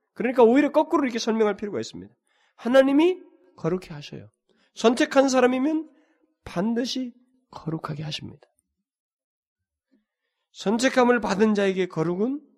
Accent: native